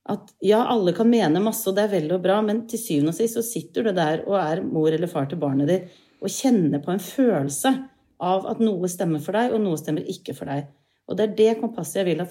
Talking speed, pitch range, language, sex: 265 wpm, 155-215 Hz, English, female